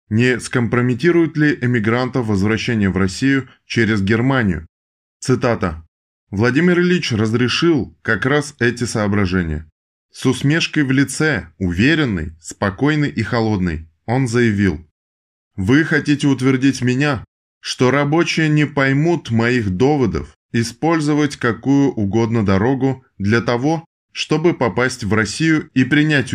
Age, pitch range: 20-39, 95-140 Hz